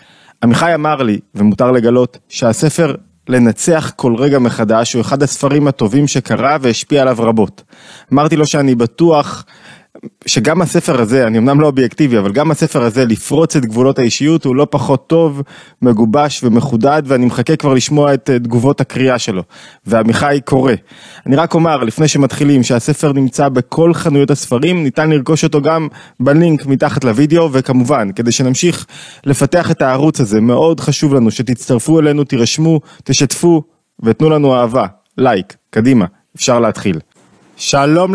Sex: male